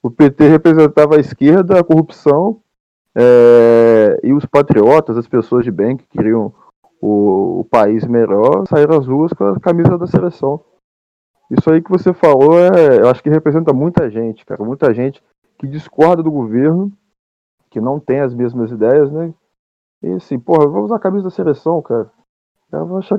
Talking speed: 175 wpm